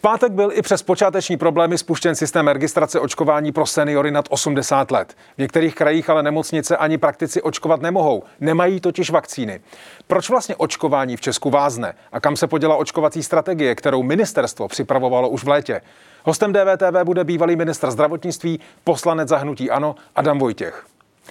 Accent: native